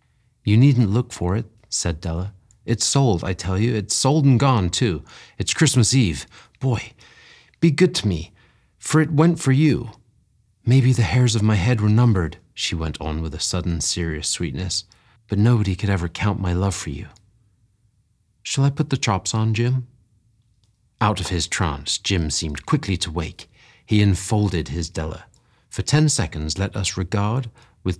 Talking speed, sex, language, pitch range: 175 wpm, male, English, 90-120 Hz